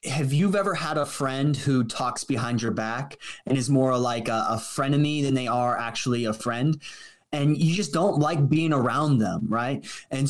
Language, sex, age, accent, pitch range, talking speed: English, male, 20-39, American, 125-165 Hz, 200 wpm